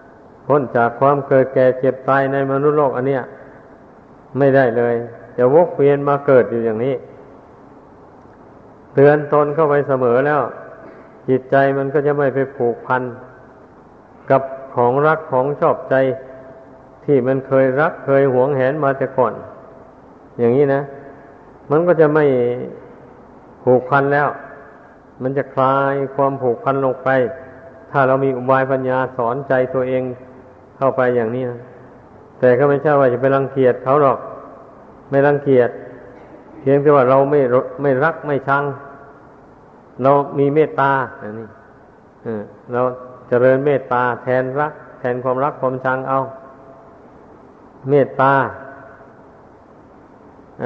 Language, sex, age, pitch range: Thai, male, 50-69, 130-140 Hz